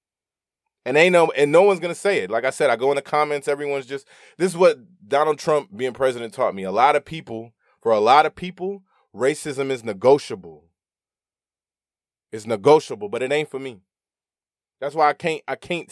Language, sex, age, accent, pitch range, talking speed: English, male, 20-39, American, 130-165 Hz, 205 wpm